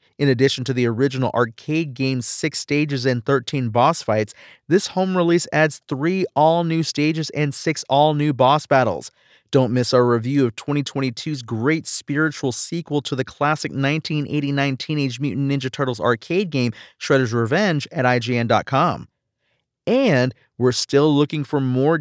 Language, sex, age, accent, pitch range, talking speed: English, male, 30-49, American, 130-165 Hz, 145 wpm